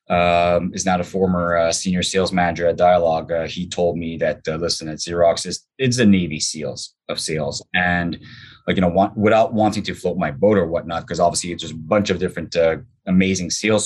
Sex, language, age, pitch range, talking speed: male, English, 20-39, 85-110 Hz, 220 wpm